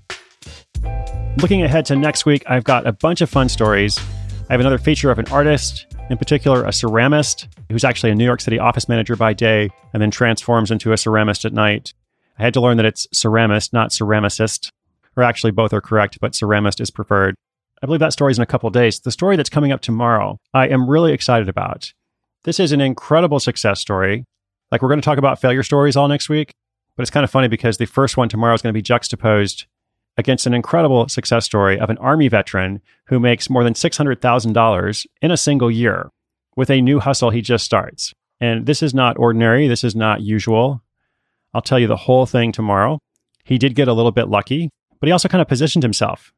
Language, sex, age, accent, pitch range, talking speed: English, male, 30-49, American, 110-135 Hz, 215 wpm